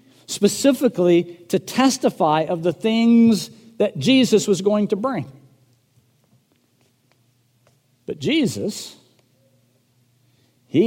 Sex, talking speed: male, 85 wpm